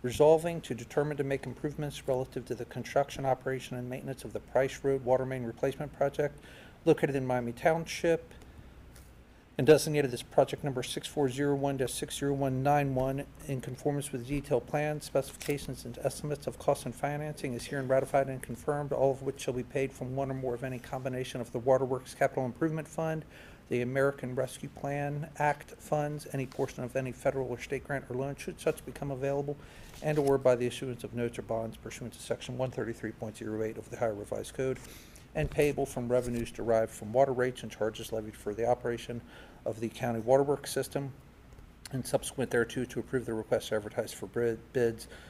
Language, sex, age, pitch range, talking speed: English, male, 50-69, 120-140 Hz, 180 wpm